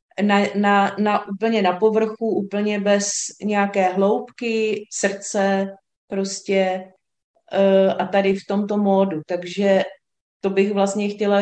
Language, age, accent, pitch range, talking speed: Czech, 30-49, native, 195-220 Hz, 120 wpm